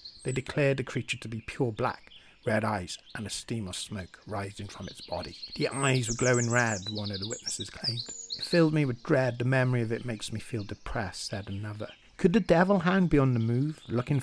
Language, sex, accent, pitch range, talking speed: English, male, British, 105-125 Hz, 225 wpm